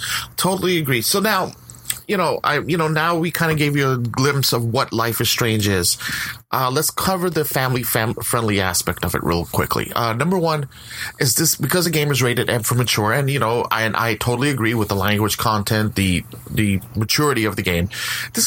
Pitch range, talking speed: 110-130 Hz, 215 wpm